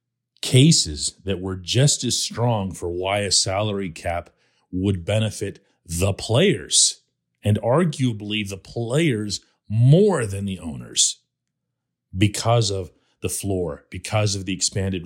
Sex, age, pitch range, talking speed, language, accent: male, 40-59, 90-130 Hz, 125 wpm, English, American